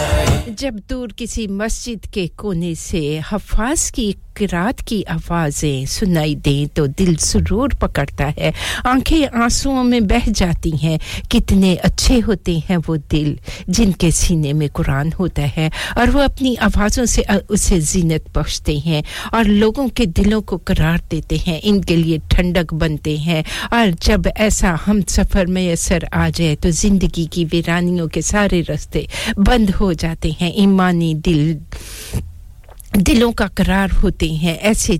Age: 50-69